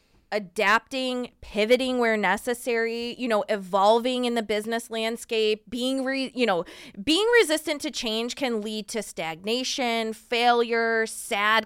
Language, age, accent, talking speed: English, 20-39, American, 130 wpm